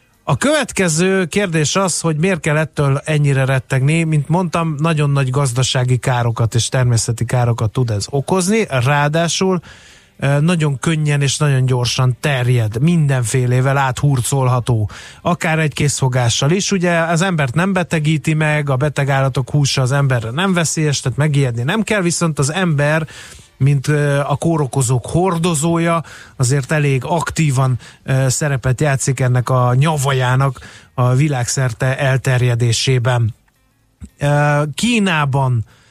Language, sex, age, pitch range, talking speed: Hungarian, male, 30-49, 125-160 Hz, 120 wpm